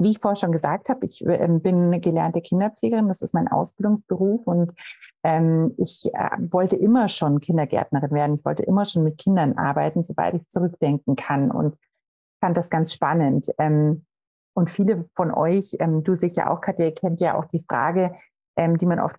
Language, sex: German, female